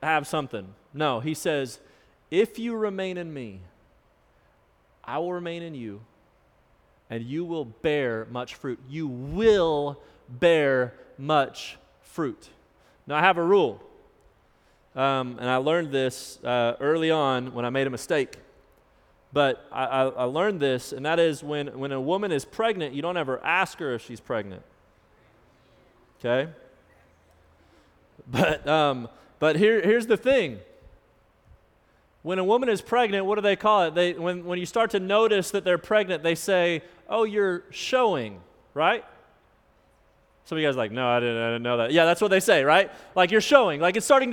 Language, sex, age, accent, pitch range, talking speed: English, male, 30-49, American, 130-215 Hz, 170 wpm